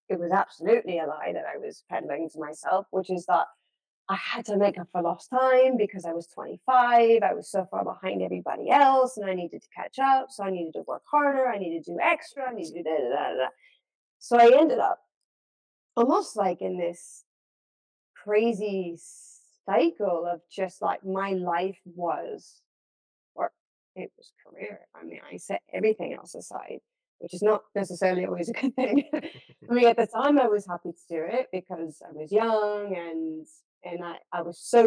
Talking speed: 195 wpm